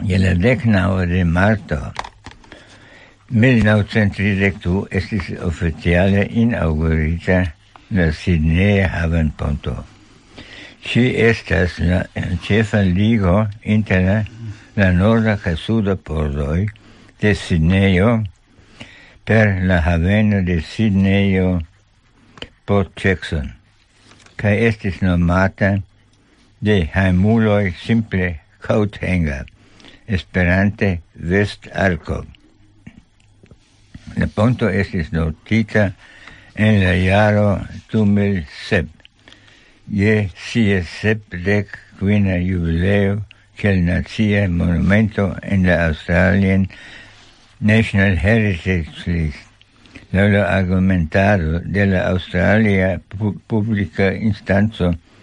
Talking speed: 90 wpm